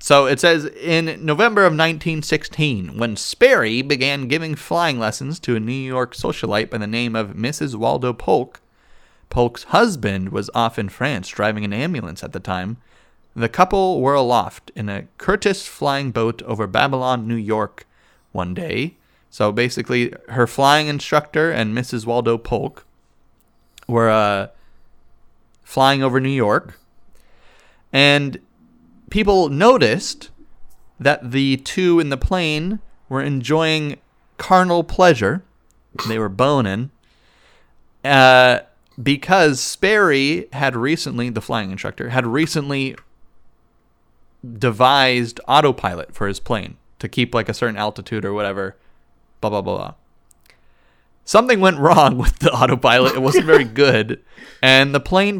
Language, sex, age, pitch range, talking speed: English, male, 30-49, 115-155 Hz, 135 wpm